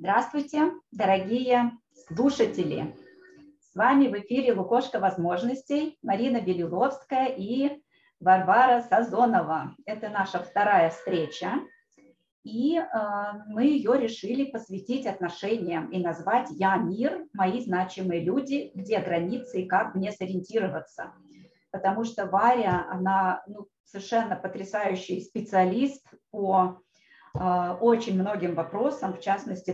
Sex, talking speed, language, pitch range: female, 105 wpm, Russian, 185-235 Hz